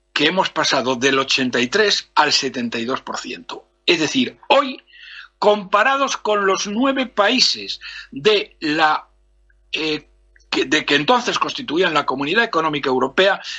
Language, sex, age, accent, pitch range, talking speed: Spanish, male, 60-79, Spanish, 155-240 Hz, 115 wpm